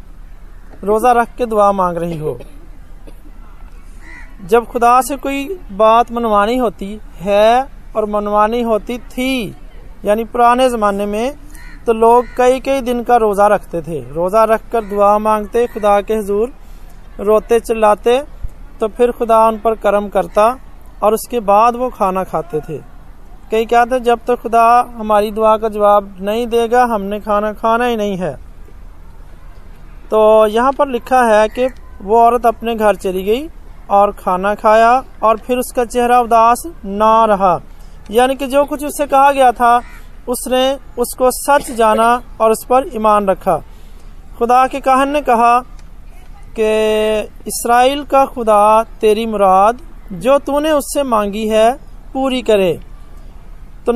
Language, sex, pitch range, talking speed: Hindi, male, 205-245 Hz, 145 wpm